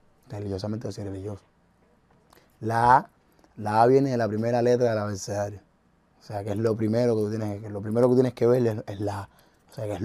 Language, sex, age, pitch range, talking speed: Spanish, male, 20-39, 100-115 Hz, 245 wpm